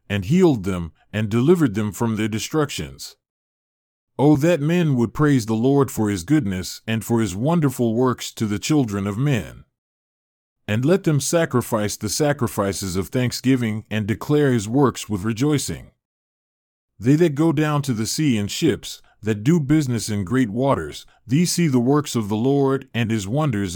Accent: American